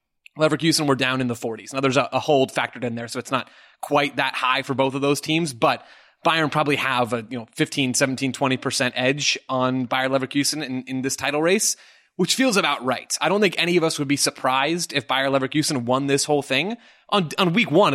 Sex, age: male, 30-49